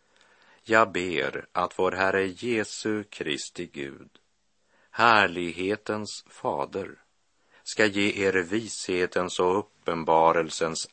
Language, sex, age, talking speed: Swedish, male, 60-79, 90 wpm